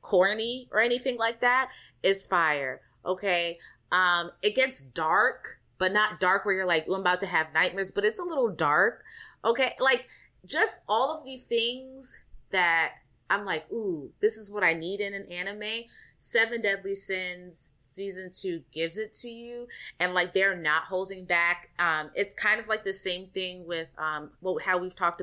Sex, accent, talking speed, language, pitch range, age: female, American, 180 wpm, English, 165-215 Hz, 20-39